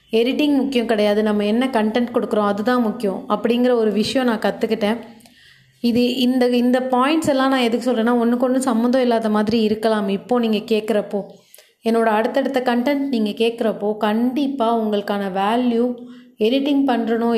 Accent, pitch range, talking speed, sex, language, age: native, 210-245 Hz, 140 wpm, female, Tamil, 30-49